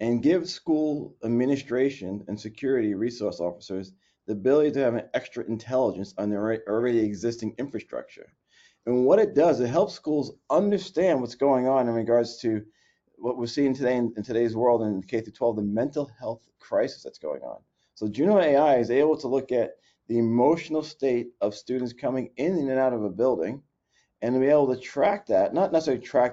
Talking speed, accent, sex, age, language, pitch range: 190 wpm, American, male, 30-49, English, 115-135 Hz